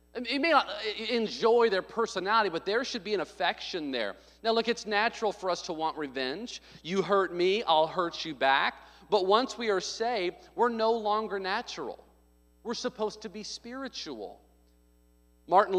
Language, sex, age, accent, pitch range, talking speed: English, male, 40-59, American, 150-210 Hz, 165 wpm